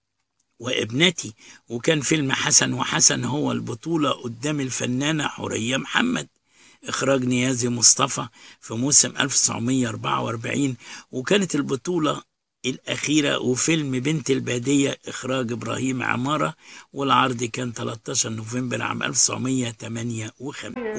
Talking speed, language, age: 90 wpm, Arabic, 60-79